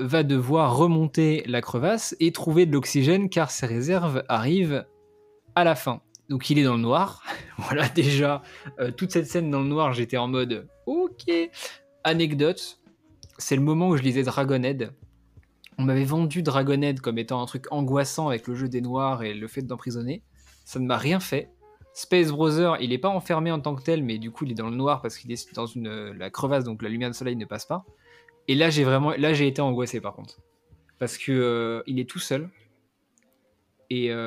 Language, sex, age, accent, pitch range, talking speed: French, male, 20-39, French, 120-155 Hz, 205 wpm